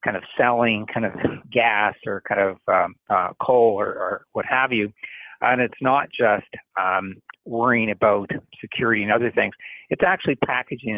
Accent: American